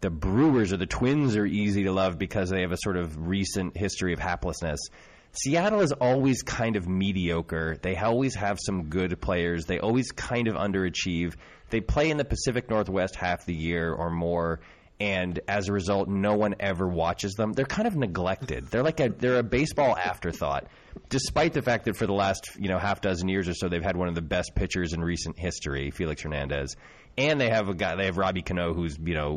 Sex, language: male, English